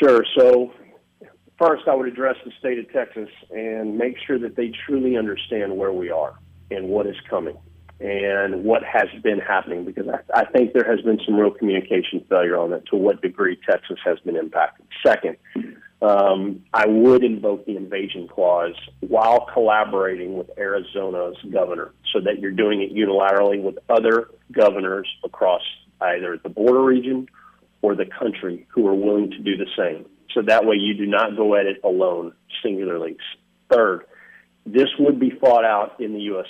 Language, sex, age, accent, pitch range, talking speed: English, male, 40-59, American, 100-130 Hz, 175 wpm